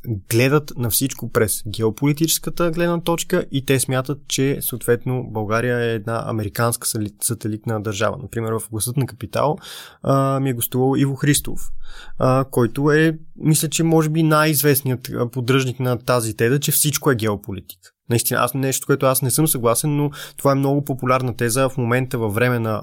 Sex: male